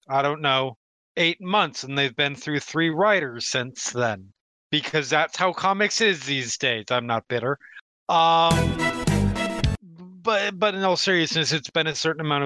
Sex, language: male, English